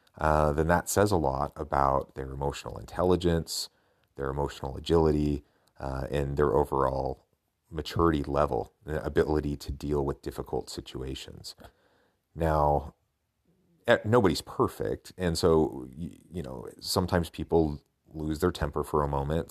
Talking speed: 130 wpm